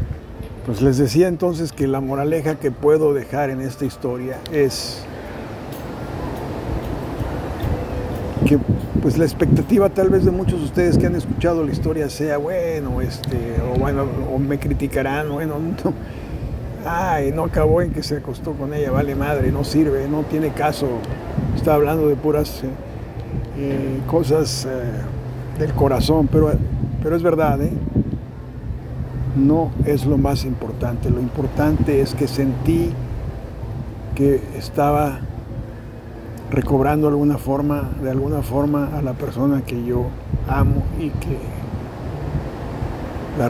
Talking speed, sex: 130 wpm, male